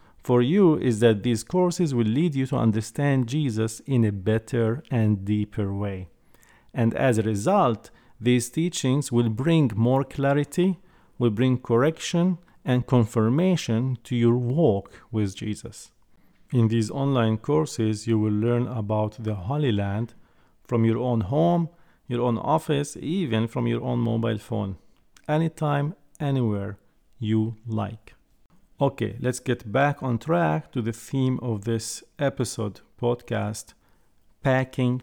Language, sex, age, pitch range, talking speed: English, male, 50-69, 110-145 Hz, 135 wpm